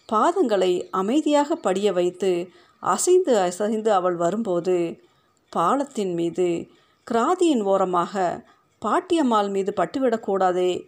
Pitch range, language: 180-230 Hz, Tamil